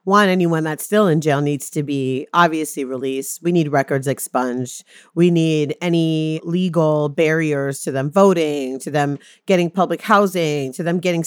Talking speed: 165 wpm